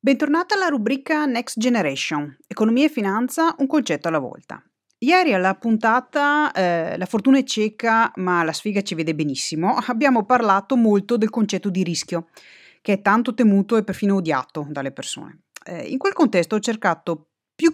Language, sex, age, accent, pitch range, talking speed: Italian, female, 30-49, native, 160-230 Hz, 165 wpm